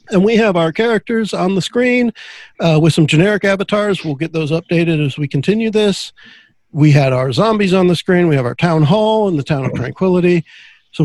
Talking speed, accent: 210 wpm, American